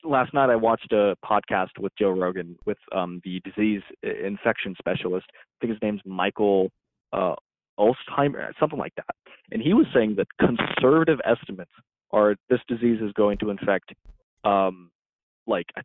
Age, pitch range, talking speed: 20-39, 100-125 Hz, 155 wpm